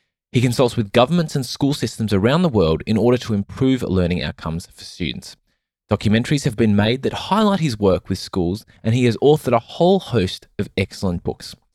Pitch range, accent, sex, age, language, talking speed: 95-135 Hz, Australian, male, 20-39, English, 195 wpm